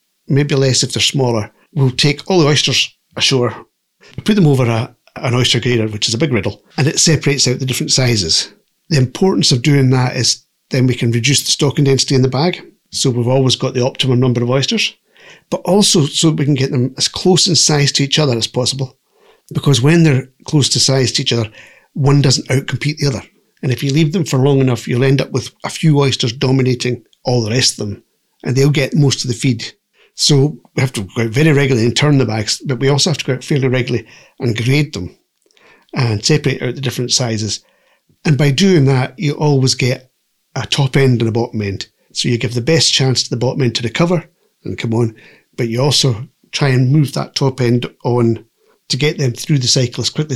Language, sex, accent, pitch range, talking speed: English, male, British, 120-145 Hz, 230 wpm